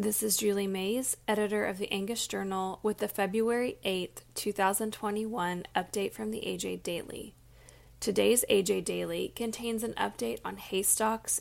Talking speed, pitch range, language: 145 wpm, 180-215 Hz, English